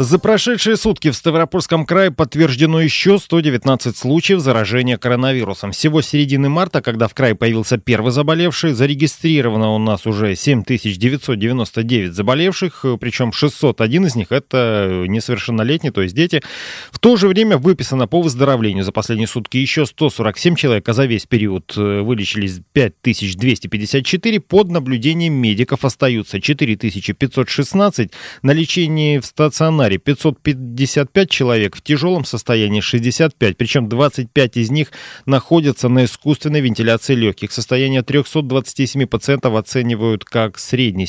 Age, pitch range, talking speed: 30-49, 110-150 Hz, 125 wpm